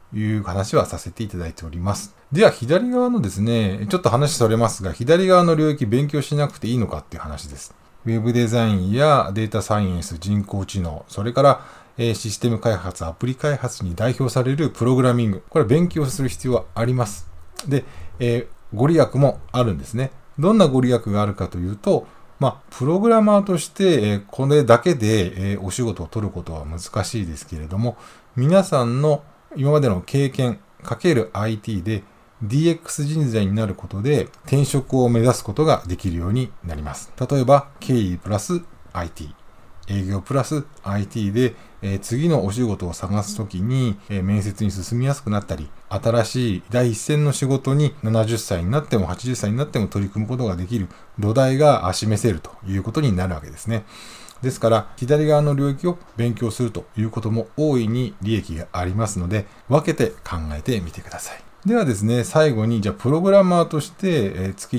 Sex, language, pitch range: male, Japanese, 95-135 Hz